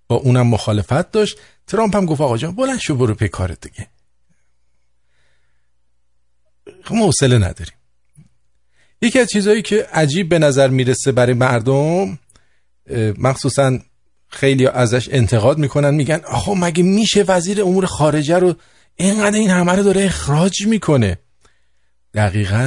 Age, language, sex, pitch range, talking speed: 50-69, English, male, 95-150 Hz, 130 wpm